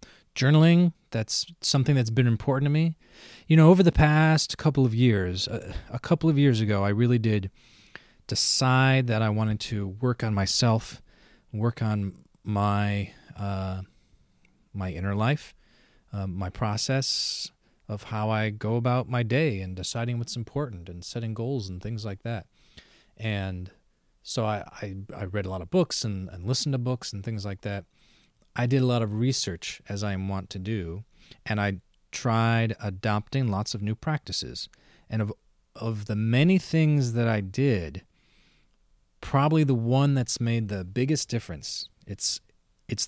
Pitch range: 100-130 Hz